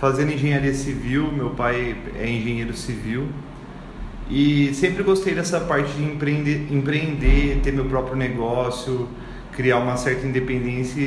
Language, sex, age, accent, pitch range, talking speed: Portuguese, male, 30-49, Brazilian, 125-155 Hz, 130 wpm